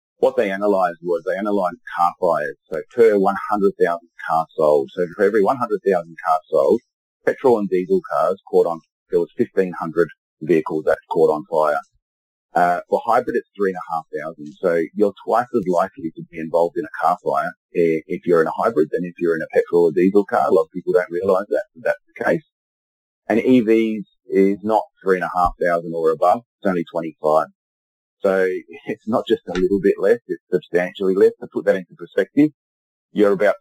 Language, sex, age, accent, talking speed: English, male, 30-49, Australian, 185 wpm